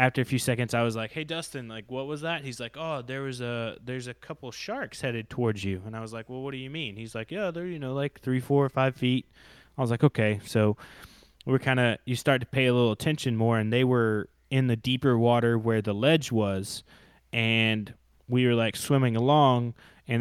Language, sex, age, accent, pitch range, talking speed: English, male, 20-39, American, 110-130 Hz, 240 wpm